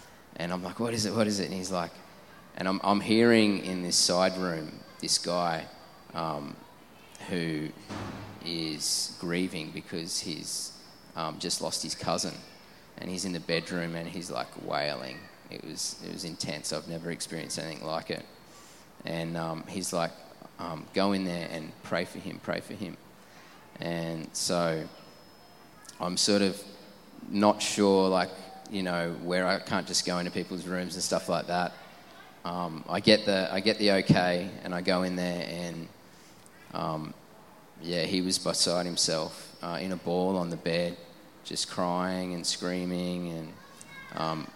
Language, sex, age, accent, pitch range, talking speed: English, male, 20-39, Australian, 85-95 Hz, 165 wpm